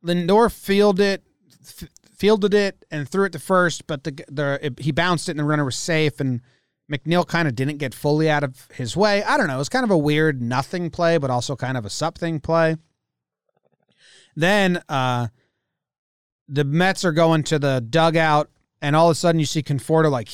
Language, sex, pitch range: English, male, 120-160 Hz